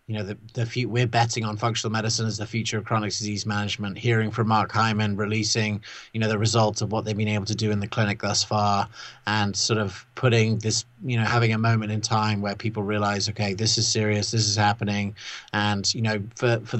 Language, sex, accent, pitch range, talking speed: English, male, British, 105-120 Hz, 230 wpm